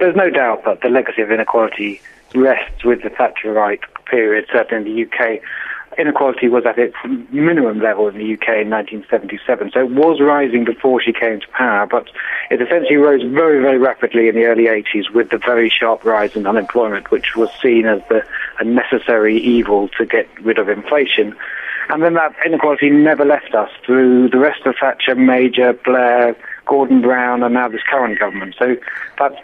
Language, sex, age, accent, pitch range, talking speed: English, male, 30-49, British, 115-140 Hz, 185 wpm